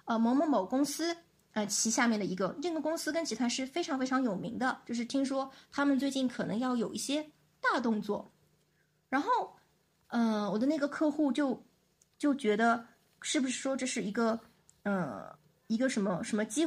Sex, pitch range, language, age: female, 220-285 Hz, Chinese, 20-39